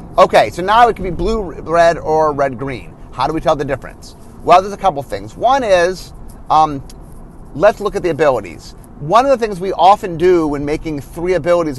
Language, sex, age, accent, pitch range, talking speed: English, male, 30-49, American, 135-185 Hz, 215 wpm